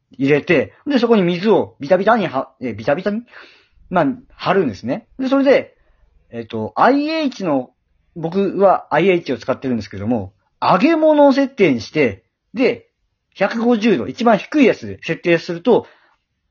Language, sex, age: Japanese, male, 40-59